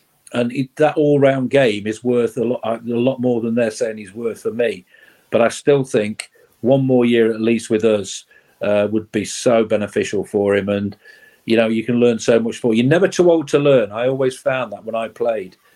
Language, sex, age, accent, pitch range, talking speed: English, male, 40-59, British, 115-135 Hz, 230 wpm